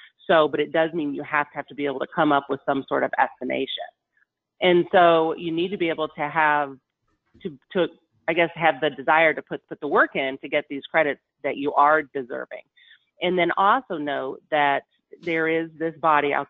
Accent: American